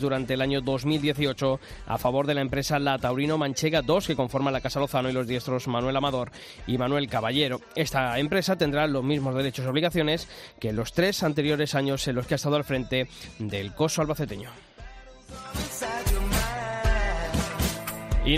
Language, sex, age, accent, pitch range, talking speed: Spanish, male, 20-39, Spanish, 135-160 Hz, 165 wpm